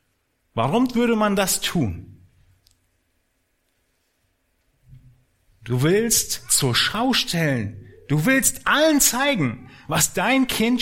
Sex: male